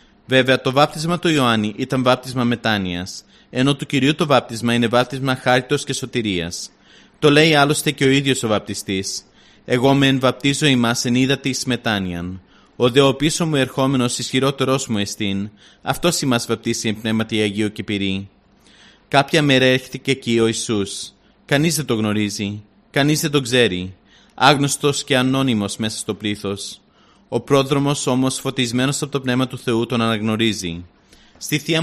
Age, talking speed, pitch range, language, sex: 30-49, 155 wpm, 110-140 Hz, Greek, male